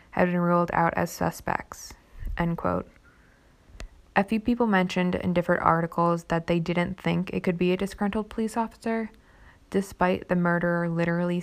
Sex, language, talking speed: female, English, 155 wpm